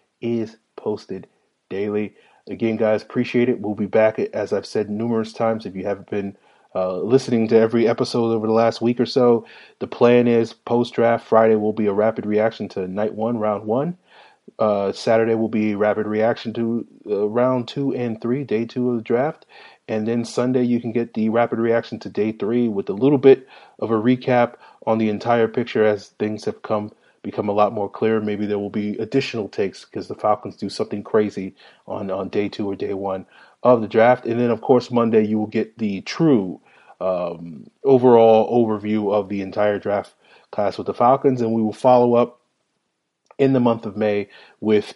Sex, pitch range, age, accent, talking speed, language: male, 105-120 Hz, 30-49, American, 200 wpm, English